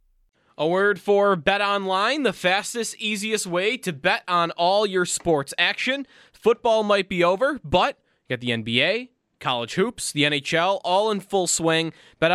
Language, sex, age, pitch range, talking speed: English, male, 20-39, 145-185 Hz, 165 wpm